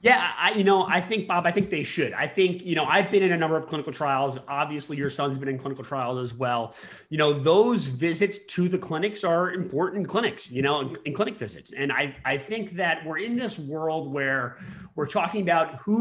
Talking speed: 230 wpm